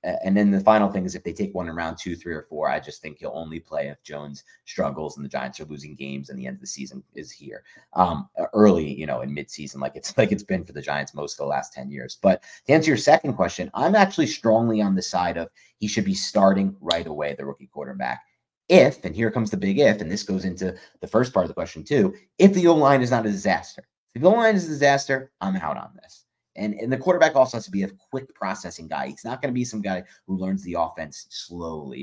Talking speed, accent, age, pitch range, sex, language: 265 wpm, American, 30-49, 95-130 Hz, male, English